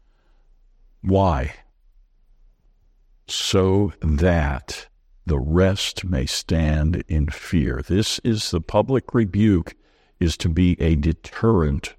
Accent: American